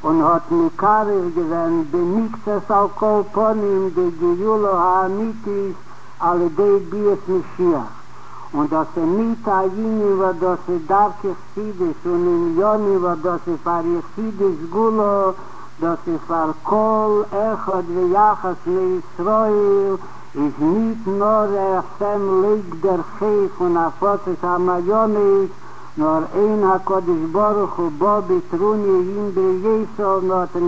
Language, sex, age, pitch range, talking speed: Hebrew, male, 60-79, 175-205 Hz, 95 wpm